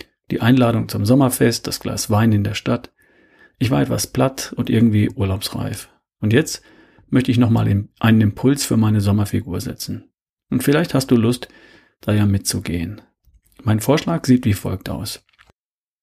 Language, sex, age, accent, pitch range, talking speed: German, male, 40-59, German, 105-125 Hz, 155 wpm